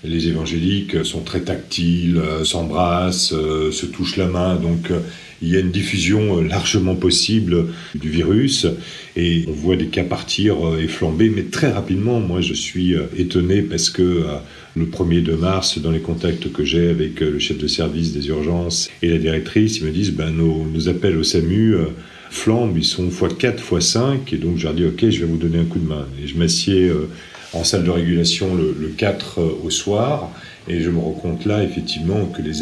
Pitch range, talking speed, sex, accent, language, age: 80-95 Hz, 195 wpm, male, French, French, 40-59